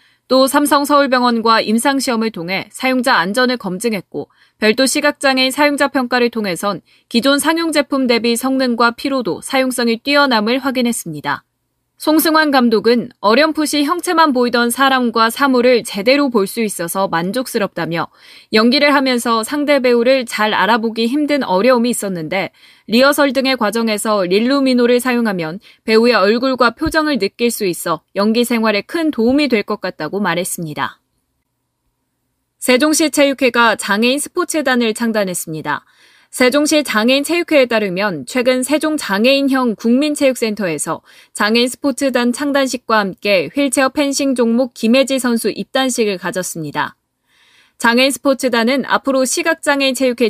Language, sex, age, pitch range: Korean, female, 20-39, 215-270 Hz